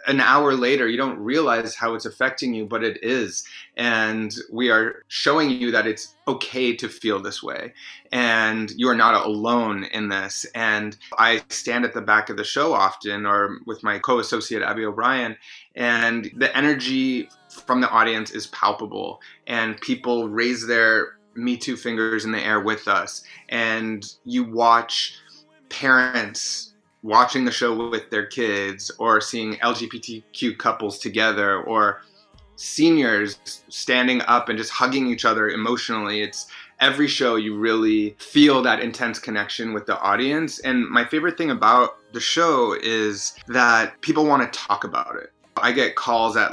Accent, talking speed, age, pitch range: American, 160 wpm, 30-49, 110-125 Hz